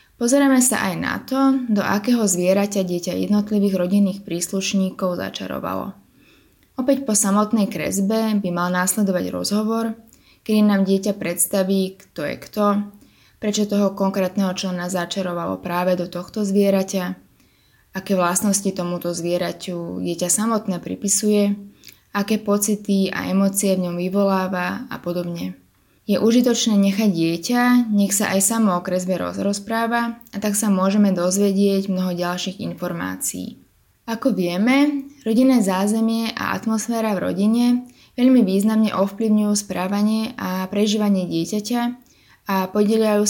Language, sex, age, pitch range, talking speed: Slovak, female, 20-39, 180-215 Hz, 120 wpm